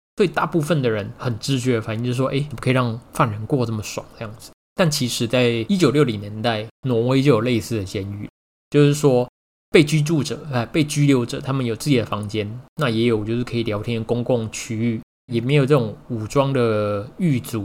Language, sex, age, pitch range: Chinese, male, 20-39, 110-140 Hz